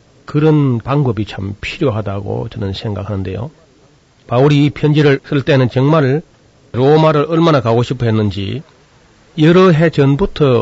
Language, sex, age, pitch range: Korean, male, 40-59, 115-140 Hz